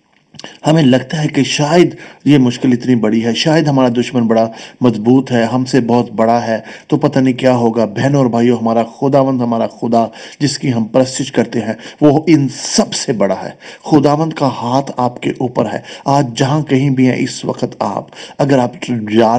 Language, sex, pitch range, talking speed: English, male, 120-150 Hz, 185 wpm